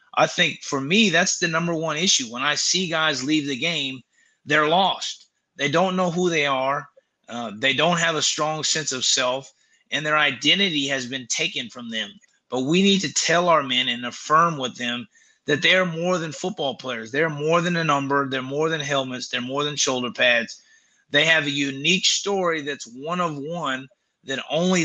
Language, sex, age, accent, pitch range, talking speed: English, male, 30-49, American, 135-170 Hz, 200 wpm